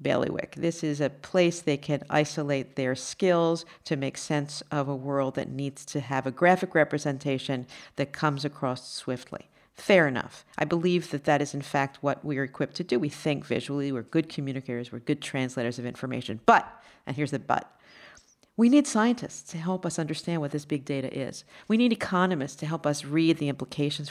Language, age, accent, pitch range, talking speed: English, 50-69, American, 140-170 Hz, 195 wpm